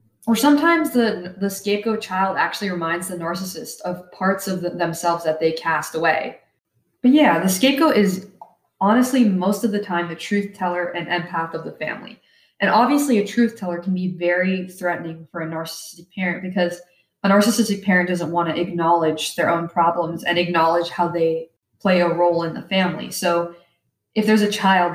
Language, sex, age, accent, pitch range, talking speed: English, female, 20-39, American, 170-200 Hz, 185 wpm